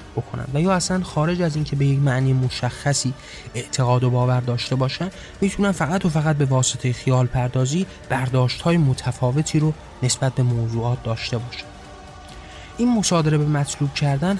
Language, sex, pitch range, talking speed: Persian, male, 125-145 Hz, 155 wpm